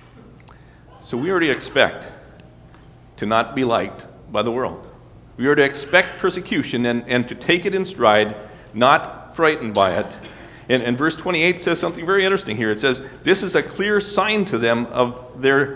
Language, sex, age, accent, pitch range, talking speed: English, male, 50-69, American, 120-155 Hz, 180 wpm